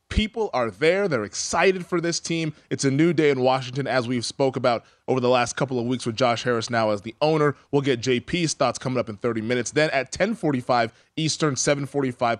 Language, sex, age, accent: English, male, 20-39, American